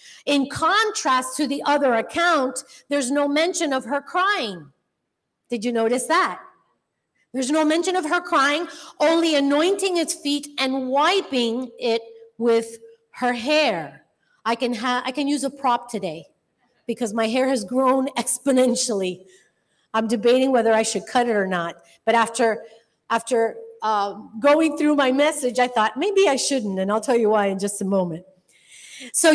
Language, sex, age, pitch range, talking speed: English, female, 40-59, 235-300 Hz, 160 wpm